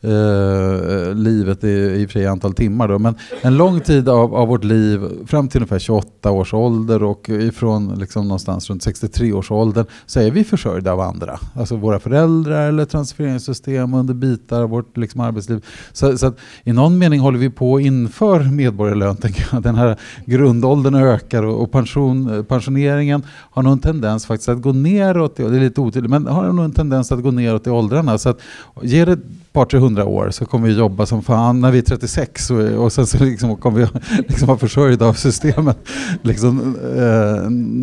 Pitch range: 105-135 Hz